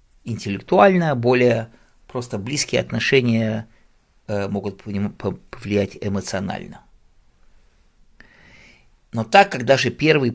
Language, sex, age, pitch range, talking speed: English, male, 50-69, 90-125 Hz, 80 wpm